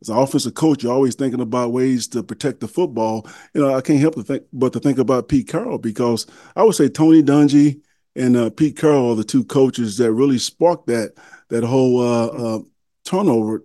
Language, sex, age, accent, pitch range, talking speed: English, male, 40-59, American, 110-145 Hz, 215 wpm